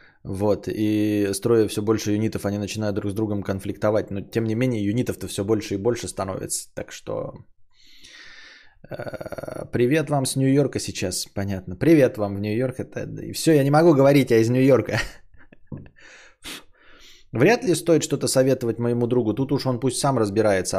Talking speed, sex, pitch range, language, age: 160 wpm, male, 100-130 Hz, Bulgarian, 20-39